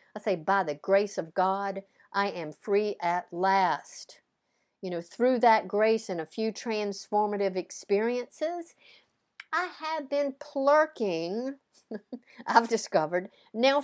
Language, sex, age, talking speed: English, female, 60-79, 125 wpm